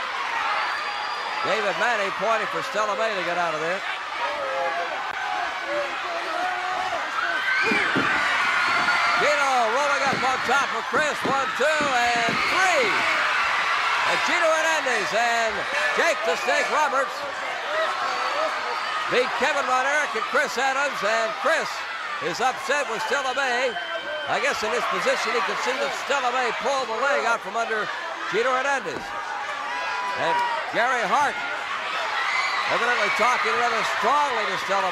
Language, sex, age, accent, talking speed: English, male, 60-79, American, 120 wpm